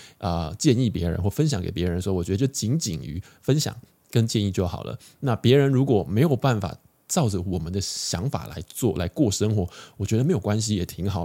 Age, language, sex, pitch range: 20-39, Chinese, male, 95-125 Hz